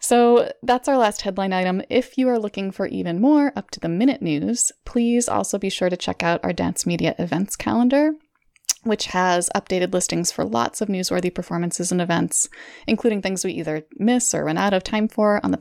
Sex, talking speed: female, 210 wpm